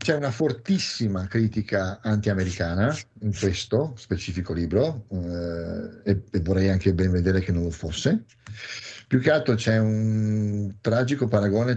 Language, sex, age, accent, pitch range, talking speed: Italian, male, 50-69, native, 100-115 Hz, 140 wpm